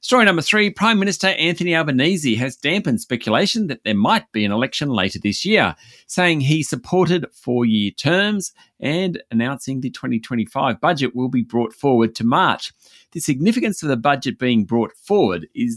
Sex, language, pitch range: male, English, 115-155 Hz